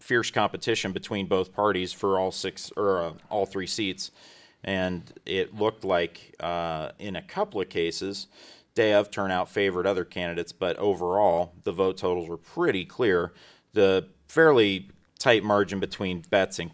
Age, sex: 30-49, male